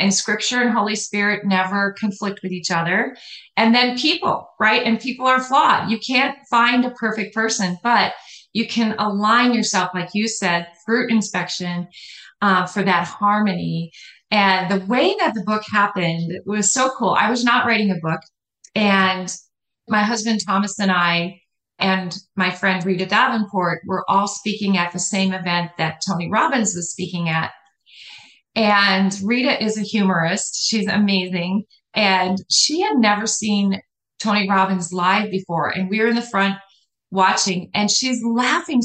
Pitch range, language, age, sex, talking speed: 190-245 Hz, English, 30-49, female, 160 wpm